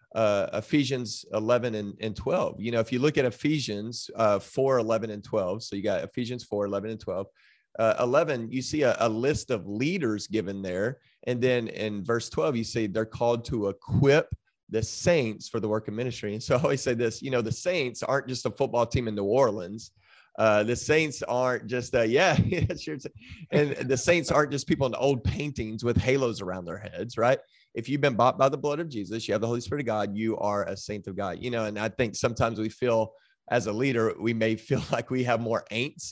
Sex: male